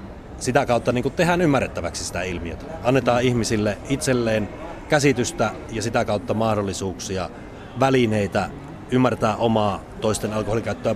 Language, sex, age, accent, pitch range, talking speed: Finnish, male, 30-49, native, 105-125 Hz, 110 wpm